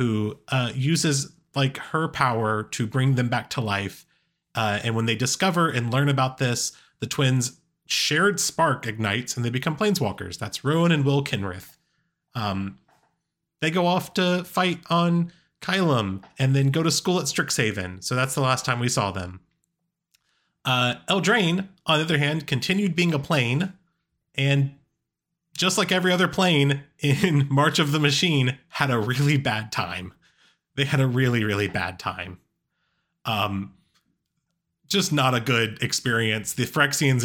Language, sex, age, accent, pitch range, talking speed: English, male, 30-49, American, 115-160 Hz, 160 wpm